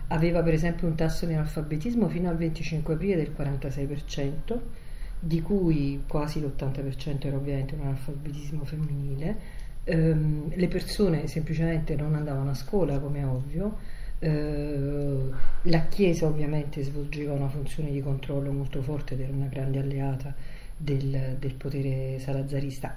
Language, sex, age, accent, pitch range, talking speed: Italian, female, 50-69, native, 135-155 Hz, 135 wpm